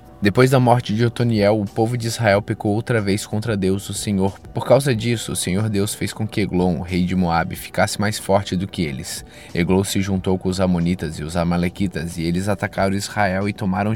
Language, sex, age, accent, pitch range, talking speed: Portuguese, male, 20-39, Brazilian, 90-105 Hz, 220 wpm